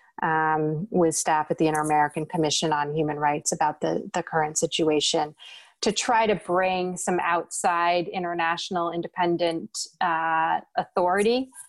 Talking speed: 130 wpm